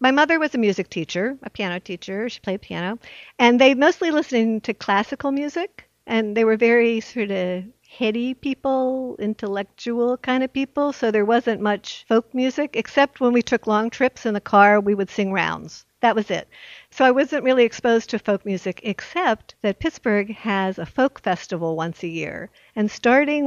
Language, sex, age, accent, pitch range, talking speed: English, female, 60-79, American, 190-255 Hz, 185 wpm